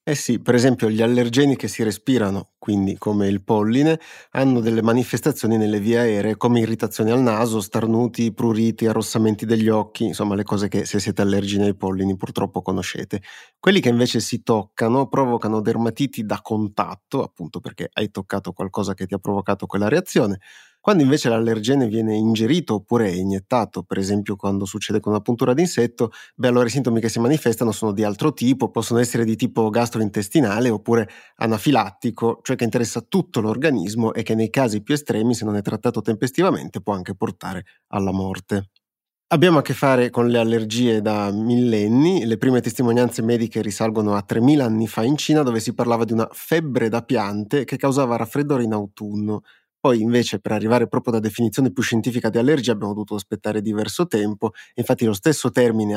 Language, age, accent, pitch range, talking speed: Italian, 30-49, native, 105-125 Hz, 180 wpm